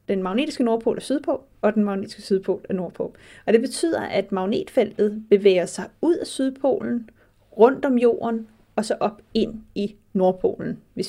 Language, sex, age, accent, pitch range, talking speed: Danish, female, 30-49, native, 195-235 Hz, 170 wpm